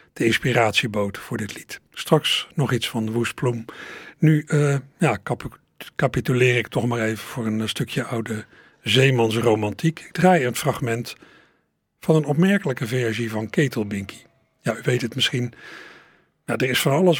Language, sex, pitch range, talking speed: Dutch, male, 115-150 Hz, 155 wpm